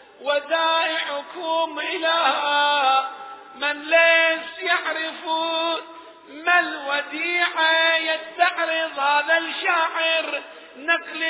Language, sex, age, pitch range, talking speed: Arabic, male, 50-69, 290-330 Hz, 60 wpm